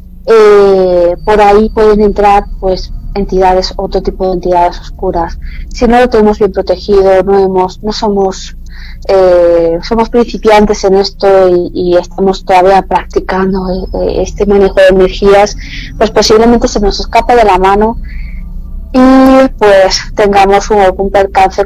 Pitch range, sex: 180-210 Hz, female